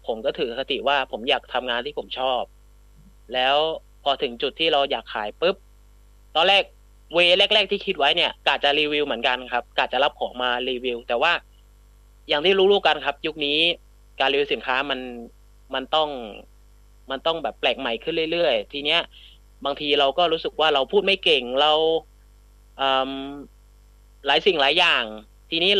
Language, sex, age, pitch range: English, male, 30-49, 125-170 Hz